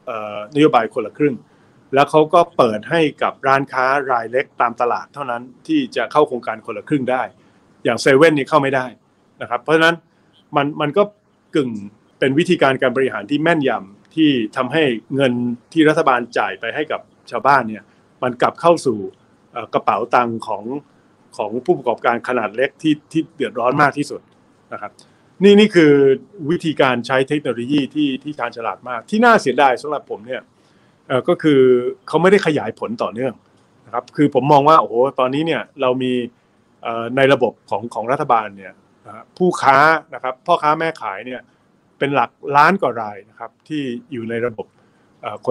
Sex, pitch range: male, 120-155 Hz